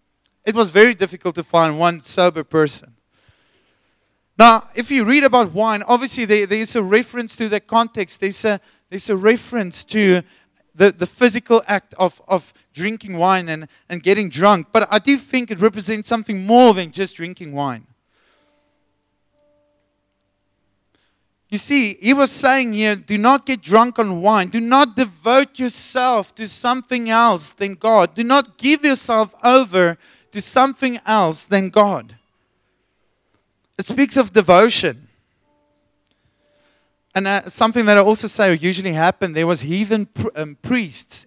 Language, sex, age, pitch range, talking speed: English, male, 30-49, 160-225 Hz, 145 wpm